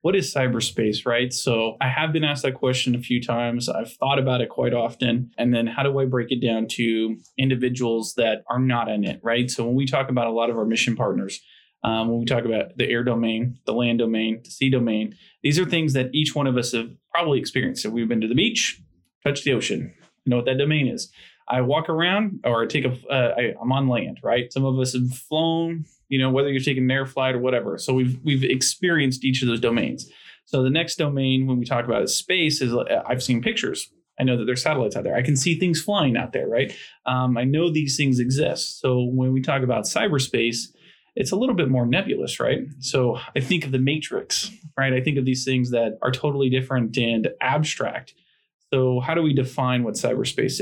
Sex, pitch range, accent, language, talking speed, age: male, 120-135 Hz, American, English, 235 wpm, 20-39